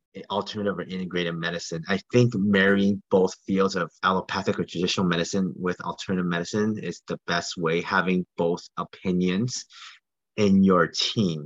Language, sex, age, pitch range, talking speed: English, male, 30-49, 95-120 Hz, 140 wpm